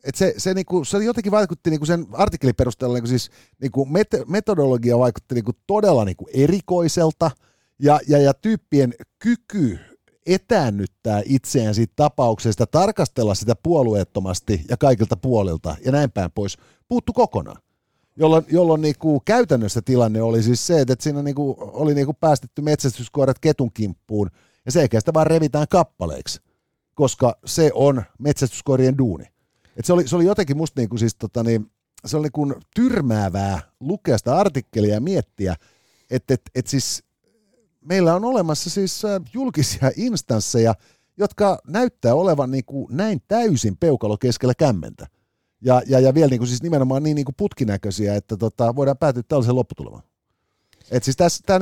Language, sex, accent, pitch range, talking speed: Finnish, male, native, 115-165 Hz, 150 wpm